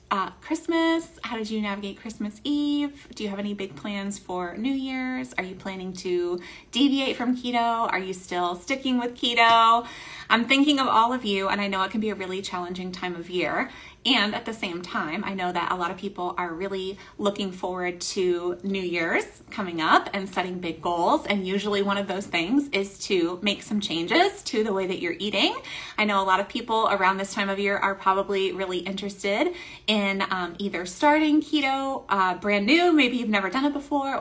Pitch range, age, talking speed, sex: 190-235 Hz, 20-39, 210 wpm, female